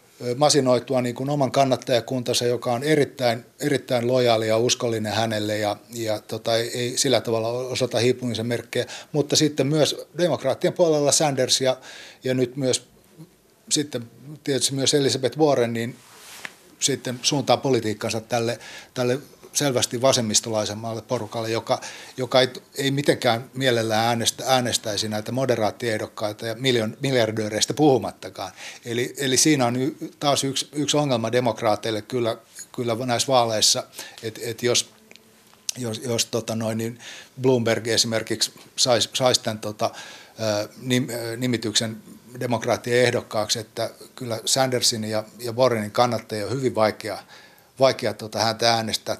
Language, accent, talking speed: Finnish, native, 125 wpm